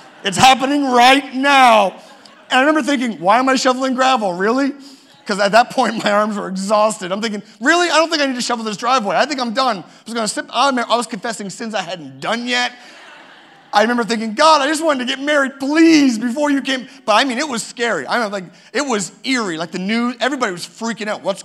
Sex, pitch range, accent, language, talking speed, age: male, 195-250 Hz, American, English, 235 wpm, 40-59